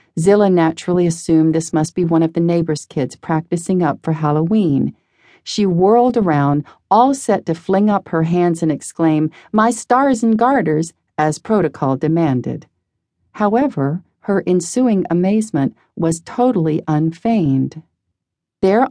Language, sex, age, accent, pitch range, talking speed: English, female, 40-59, American, 155-190 Hz, 135 wpm